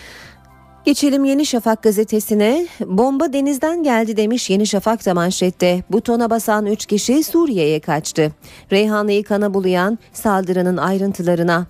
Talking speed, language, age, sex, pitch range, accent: 120 wpm, Turkish, 40-59, female, 175-235 Hz, native